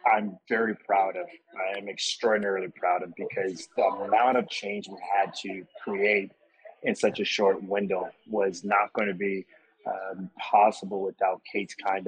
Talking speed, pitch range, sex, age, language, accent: 165 wpm, 100-115 Hz, male, 30-49, English, American